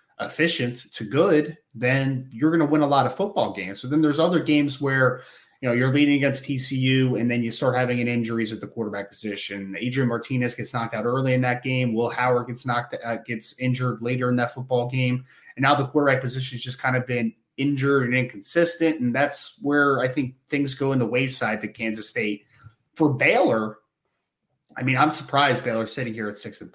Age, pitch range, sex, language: 20-39, 115-140 Hz, male, English